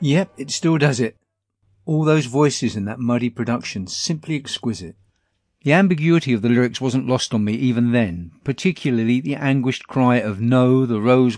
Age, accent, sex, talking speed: 50-69, British, male, 175 wpm